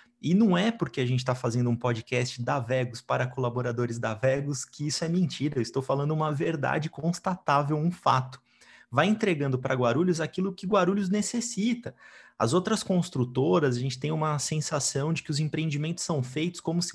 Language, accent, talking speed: Portuguese, Brazilian, 185 wpm